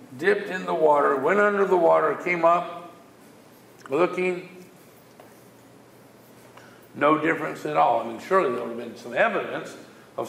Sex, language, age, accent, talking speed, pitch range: male, English, 60-79, American, 145 wpm, 180-230 Hz